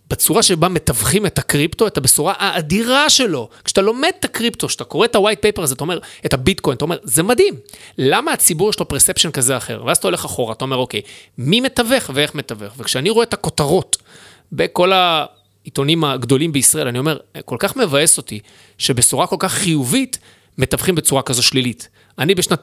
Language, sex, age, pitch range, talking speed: Hebrew, male, 30-49, 140-200 Hz, 185 wpm